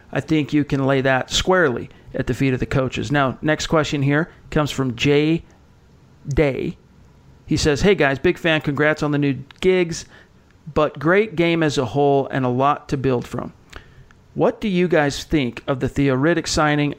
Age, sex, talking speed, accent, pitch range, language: 40-59, male, 185 wpm, American, 135-155 Hz, English